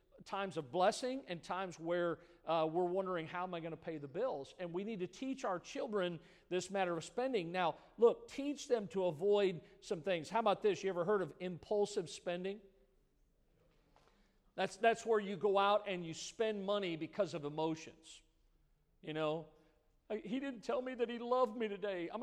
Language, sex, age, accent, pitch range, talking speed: English, male, 50-69, American, 180-230 Hz, 190 wpm